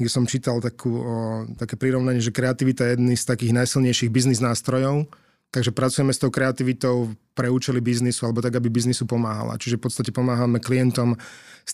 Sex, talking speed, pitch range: male, 180 wpm, 120-130 Hz